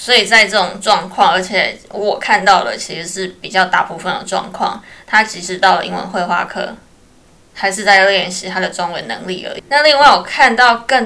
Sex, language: female, Chinese